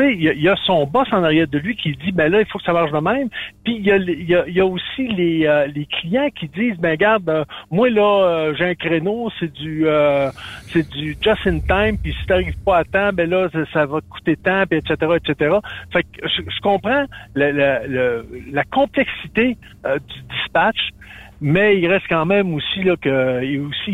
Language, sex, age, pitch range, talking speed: French, male, 50-69, 145-205 Hz, 225 wpm